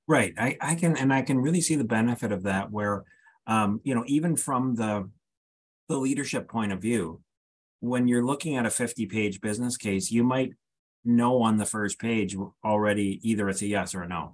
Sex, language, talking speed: male, English, 205 wpm